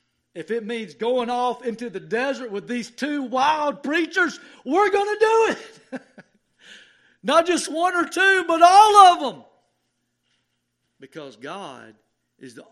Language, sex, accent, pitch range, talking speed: English, male, American, 185-240 Hz, 145 wpm